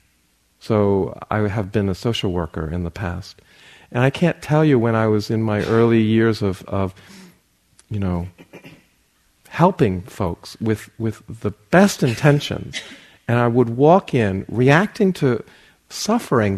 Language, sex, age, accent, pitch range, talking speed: English, male, 40-59, American, 85-115 Hz, 150 wpm